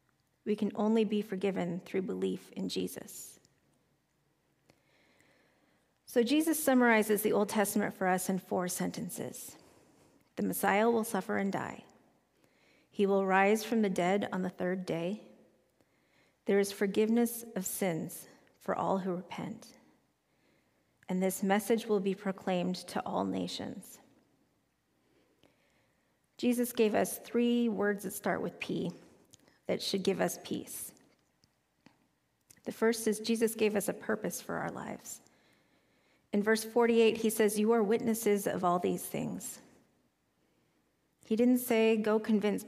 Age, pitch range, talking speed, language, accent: 40-59, 190-225 Hz, 135 wpm, English, American